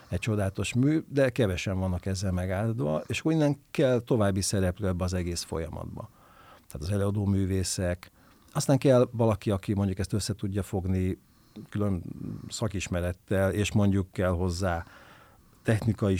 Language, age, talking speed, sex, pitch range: Hungarian, 50-69, 135 wpm, male, 90-110 Hz